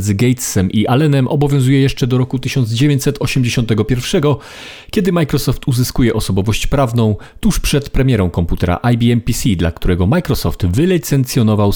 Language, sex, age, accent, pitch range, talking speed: Polish, male, 40-59, native, 105-135 Hz, 120 wpm